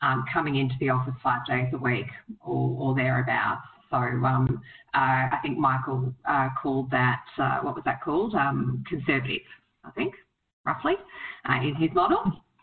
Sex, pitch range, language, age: female, 130-145 Hz, English, 30-49